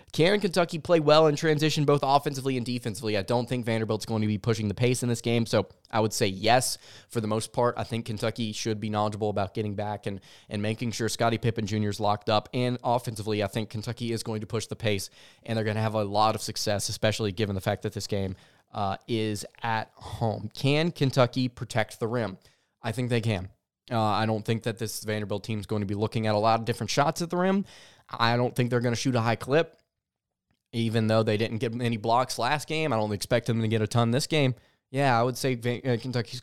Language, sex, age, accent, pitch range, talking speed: English, male, 20-39, American, 105-125 Hz, 240 wpm